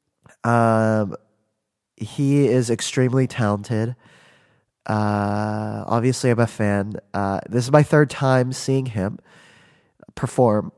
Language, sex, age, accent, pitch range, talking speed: English, male, 20-39, American, 110-140 Hz, 105 wpm